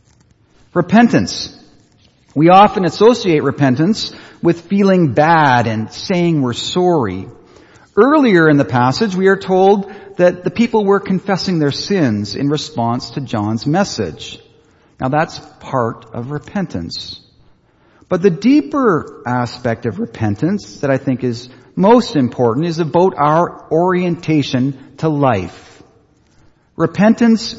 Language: English